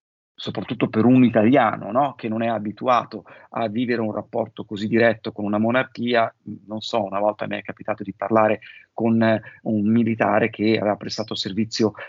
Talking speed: 170 wpm